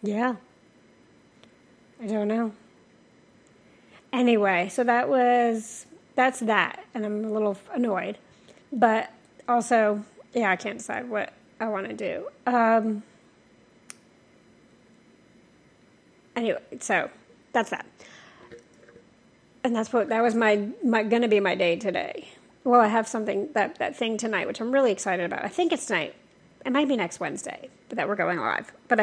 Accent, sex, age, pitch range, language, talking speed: American, female, 30-49, 210-250 Hz, English, 145 wpm